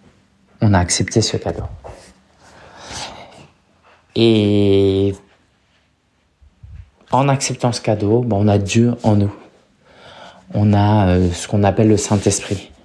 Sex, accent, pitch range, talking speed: male, French, 100-115 Hz, 105 wpm